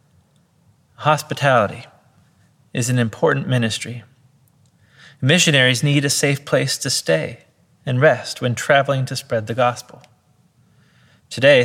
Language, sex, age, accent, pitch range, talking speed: English, male, 30-49, American, 115-145 Hz, 110 wpm